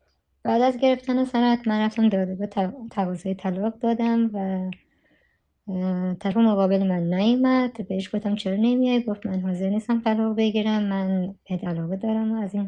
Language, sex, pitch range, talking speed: Persian, male, 180-215 Hz, 155 wpm